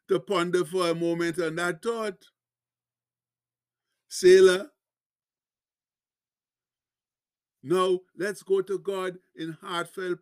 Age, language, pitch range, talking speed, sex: 60-79, English, 170-195 Hz, 95 wpm, male